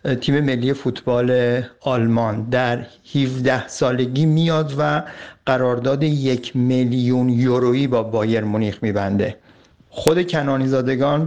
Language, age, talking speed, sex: Persian, 50-69, 100 wpm, male